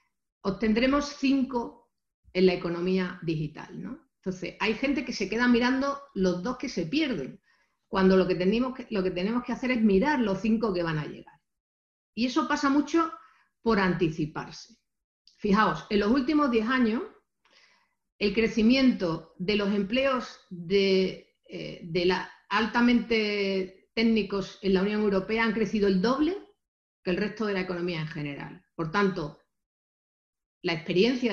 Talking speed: 155 wpm